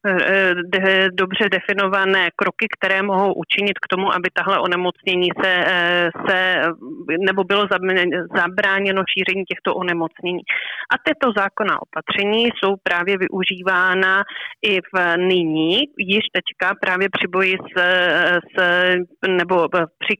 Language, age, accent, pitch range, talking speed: Czech, 30-49, native, 180-195 Hz, 115 wpm